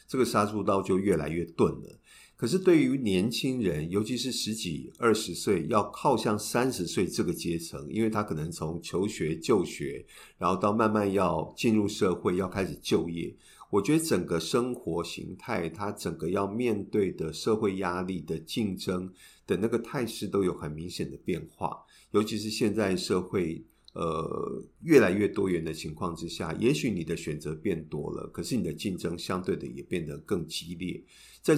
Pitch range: 85-110 Hz